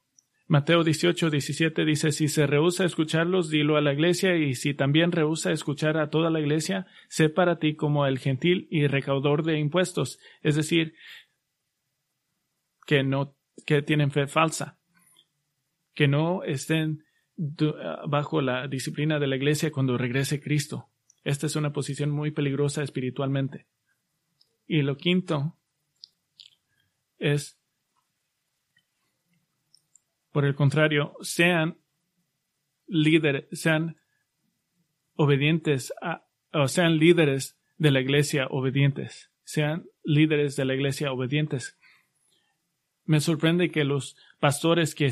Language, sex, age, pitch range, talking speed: English, male, 30-49, 145-165 Hz, 120 wpm